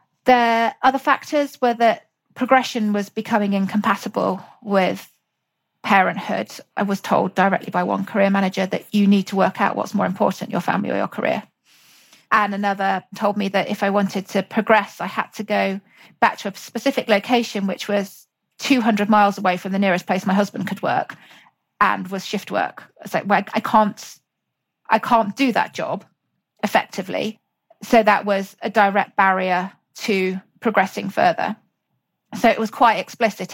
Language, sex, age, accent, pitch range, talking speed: English, female, 40-59, British, 195-225 Hz, 170 wpm